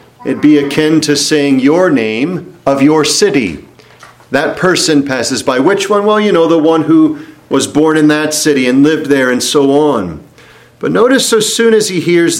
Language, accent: English, American